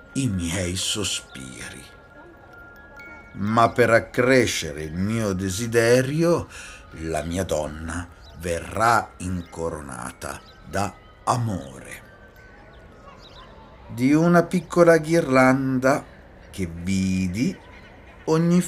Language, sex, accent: Italian, male, native